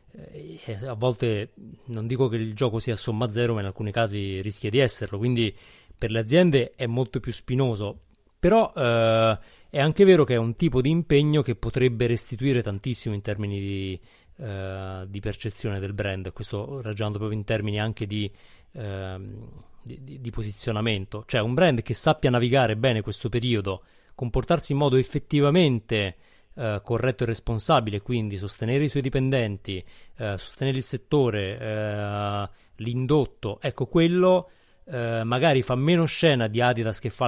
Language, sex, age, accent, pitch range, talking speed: Italian, male, 30-49, native, 105-130 Hz, 155 wpm